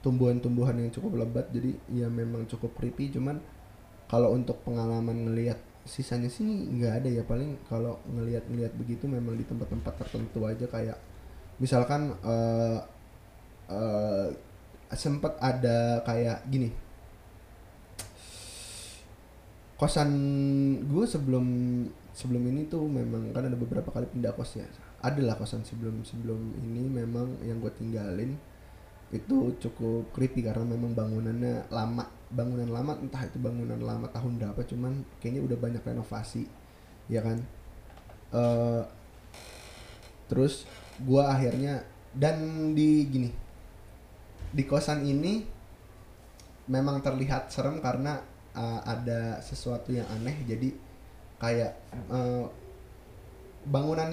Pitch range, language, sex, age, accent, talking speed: 110-130 Hz, Indonesian, male, 20-39, native, 115 wpm